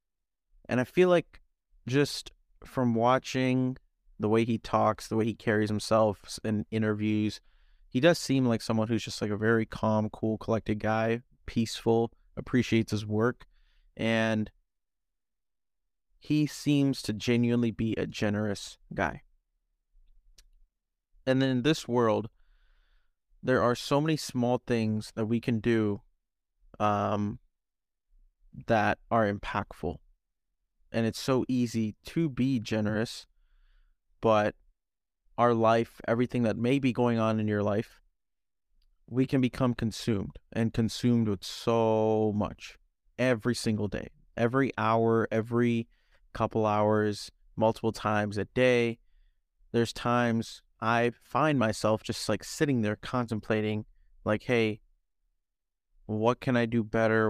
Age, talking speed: 20-39, 125 wpm